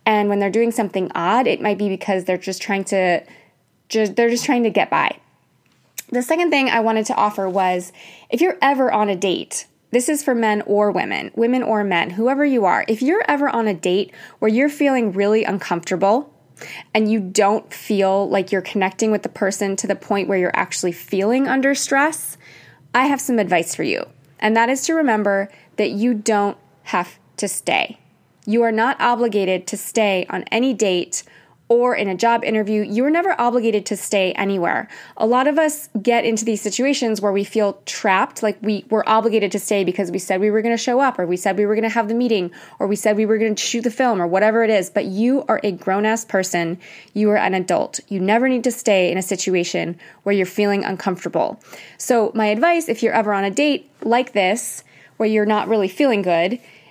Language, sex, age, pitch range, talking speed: English, female, 20-39, 195-235 Hz, 215 wpm